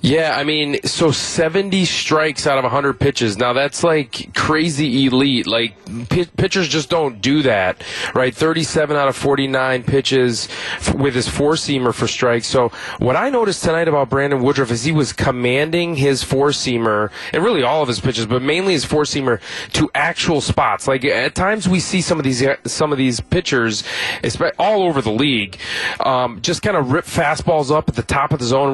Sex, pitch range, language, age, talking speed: male, 120-150 Hz, English, 30-49, 180 wpm